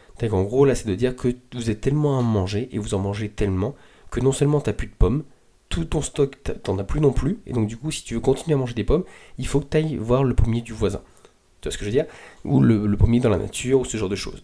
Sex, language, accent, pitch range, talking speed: male, French, French, 100-125 Hz, 310 wpm